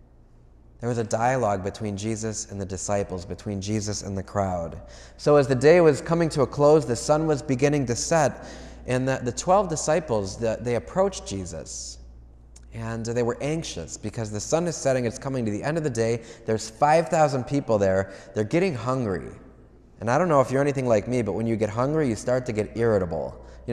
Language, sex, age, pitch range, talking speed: English, male, 20-39, 100-140 Hz, 205 wpm